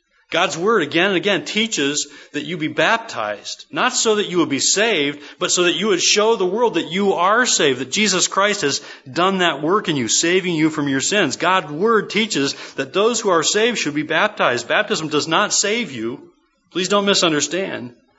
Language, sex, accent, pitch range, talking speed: English, male, American, 135-180 Hz, 205 wpm